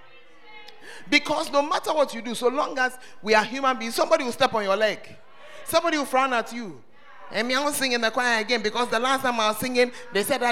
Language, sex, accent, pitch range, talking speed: English, male, Nigerian, 235-315 Hz, 240 wpm